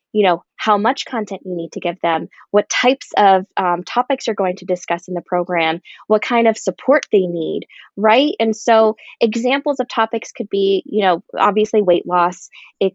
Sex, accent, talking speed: female, American, 195 wpm